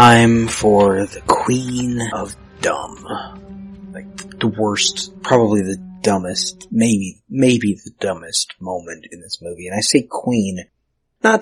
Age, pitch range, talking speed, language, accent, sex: 30-49, 95-130 Hz, 130 wpm, English, American, male